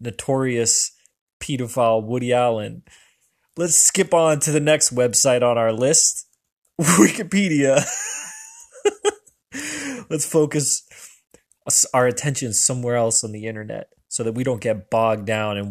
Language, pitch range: English, 120-165 Hz